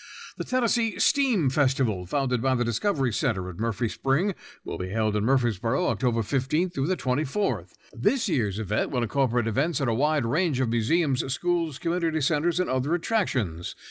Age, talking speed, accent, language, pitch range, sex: 60-79, 175 wpm, American, English, 115-160 Hz, male